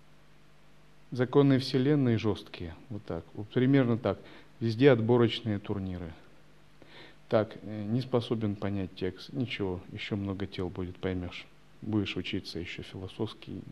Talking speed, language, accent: 110 wpm, Russian, native